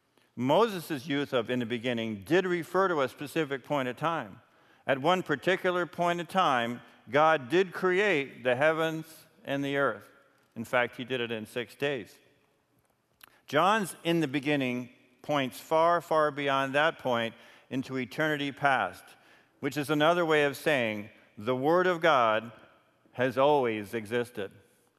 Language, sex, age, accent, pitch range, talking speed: English, male, 50-69, American, 120-155 Hz, 150 wpm